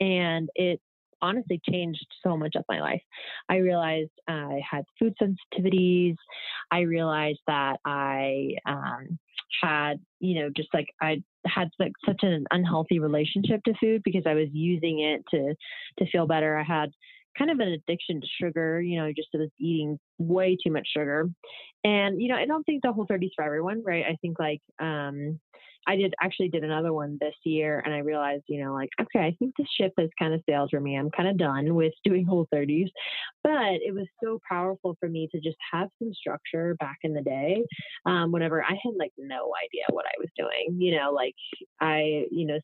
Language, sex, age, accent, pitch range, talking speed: English, female, 20-39, American, 155-190 Hz, 200 wpm